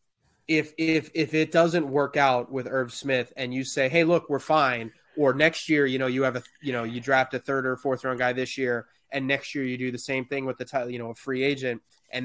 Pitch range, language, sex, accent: 125-150 Hz, English, male, American